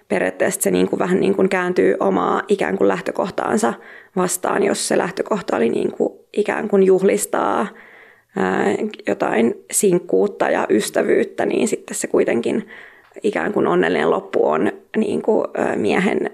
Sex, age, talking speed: female, 20-39, 135 wpm